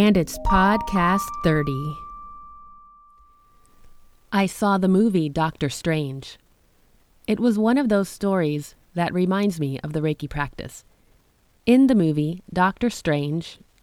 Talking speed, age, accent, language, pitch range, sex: 120 wpm, 30-49, American, English, 145-195 Hz, female